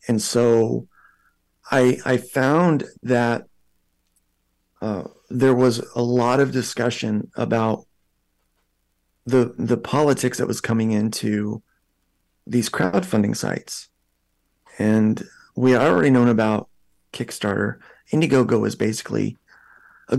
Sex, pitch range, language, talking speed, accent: male, 105-125 Hz, English, 100 wpm, American